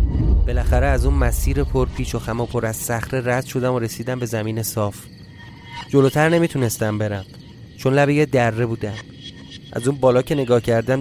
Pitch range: 115-150 Hz